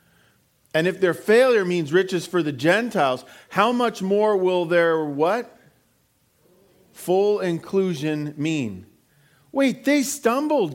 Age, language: 40-59, English